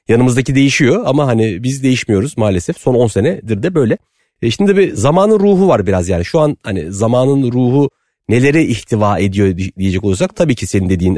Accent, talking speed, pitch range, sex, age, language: native, 190 wpm, 100-150 Hz, male, 40-59, Turkish